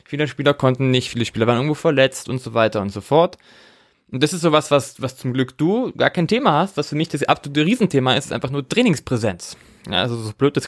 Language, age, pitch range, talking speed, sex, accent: German, 20-39, 115-155 Hz, 245 wpm, male, German